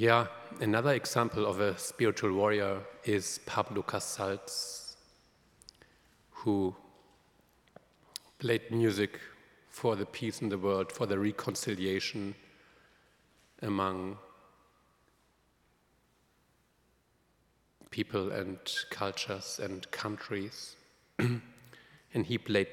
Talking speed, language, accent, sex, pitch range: 80 wpm, English, German, male, 100-125 Hz